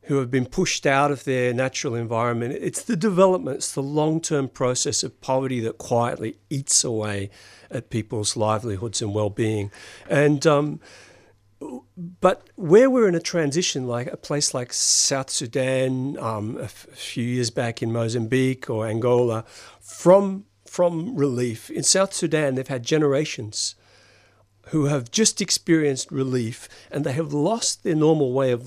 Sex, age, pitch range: male, 50-69, 120-170 Hz